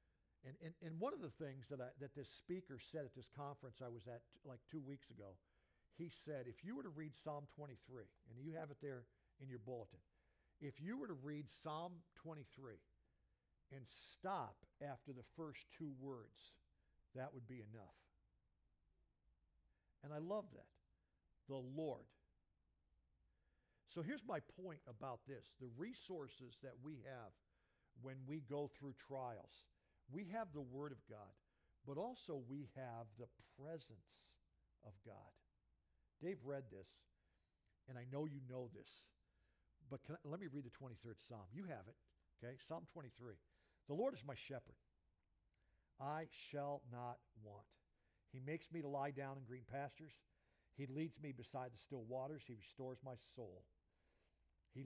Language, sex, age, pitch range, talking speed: English, male, 60-79, 105-145 Hz, 160 wpm